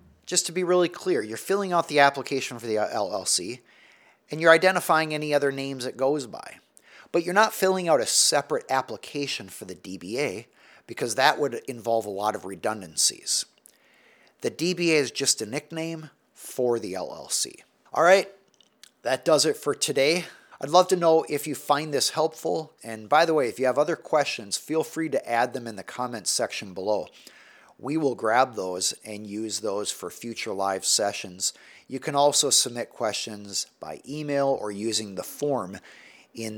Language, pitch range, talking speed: English, 115-150 Hz, 175 wpm